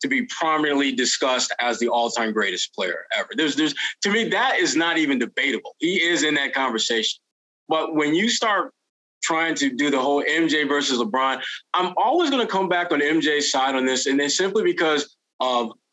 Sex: male